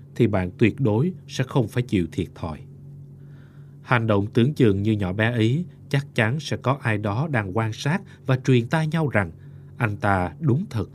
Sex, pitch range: male, 105-140 Hz